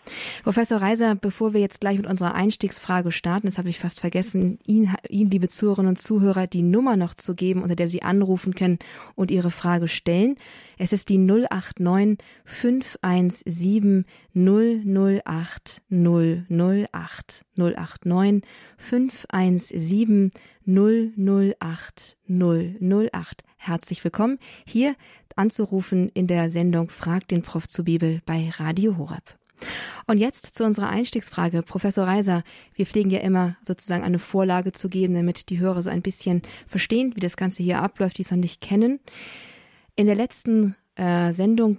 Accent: German